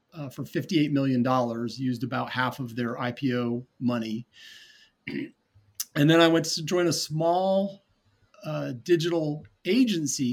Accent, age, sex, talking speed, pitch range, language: American, 40-59, male, 130 wpm, 125-155 Hz, English